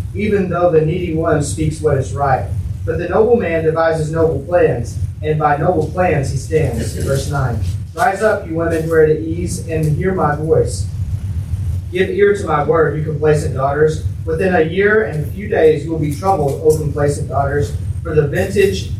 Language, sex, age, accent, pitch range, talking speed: English, male, 30-49, American, 100-160 Hz, 195 wpm